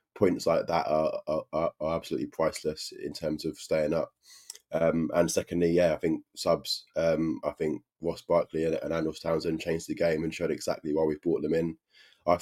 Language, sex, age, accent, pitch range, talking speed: English, male, 20-39, British, 75-85 Hz, 200 wpm